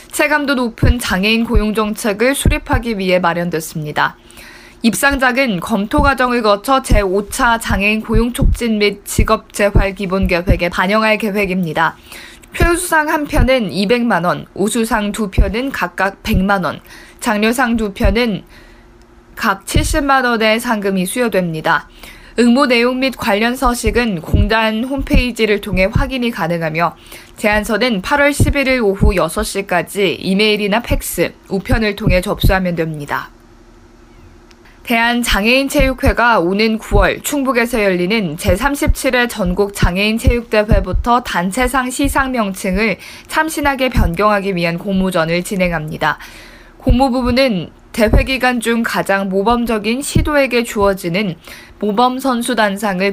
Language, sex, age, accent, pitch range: Korean, female, 20-39, native, 190-245 Hz